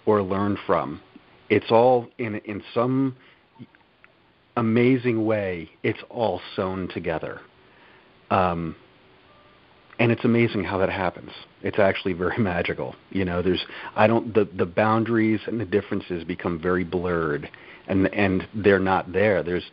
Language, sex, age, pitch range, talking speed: English, male, 40-59, 90-110 Hz, 135 wpm